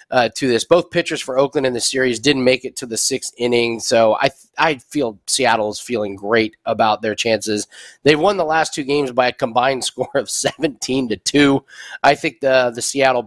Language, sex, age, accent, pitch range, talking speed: English, male, 30-49, American, 120-160 Hz, 215 wpm